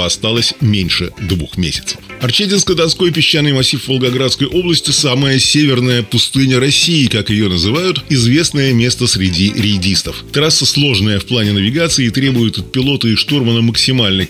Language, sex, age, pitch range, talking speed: Russian, male, 20-39, 105-135 Hz, 145 wpm